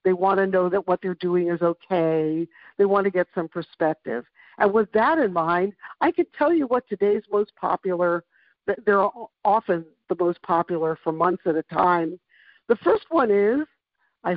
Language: English